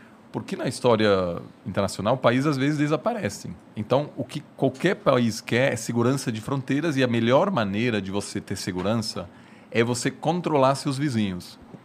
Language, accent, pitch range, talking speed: Portuguese, Brazilian, 110-140 Hz, 155 wpm